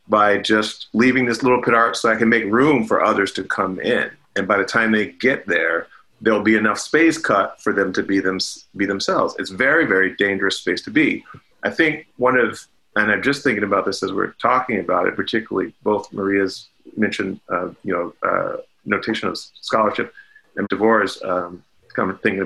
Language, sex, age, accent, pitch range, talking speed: English, male, 40-59, American, 105-115 Hz, 200 wpm